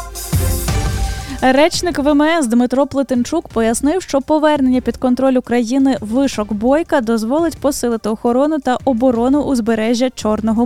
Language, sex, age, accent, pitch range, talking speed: Ukrainian, female, 10-29, native, 225-275 Hz, 105 wpm